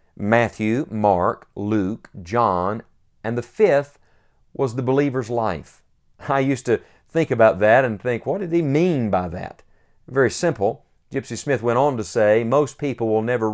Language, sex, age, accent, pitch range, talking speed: English, male, 50-69, American, 110-145 Hz, 165 wpm